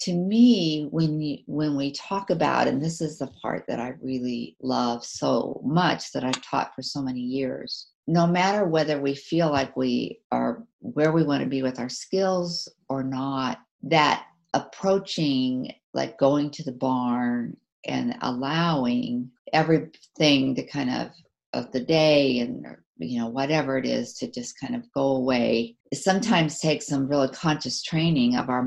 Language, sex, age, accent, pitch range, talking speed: English, female, 50-69, American, 130-165 Hz, 170 wpm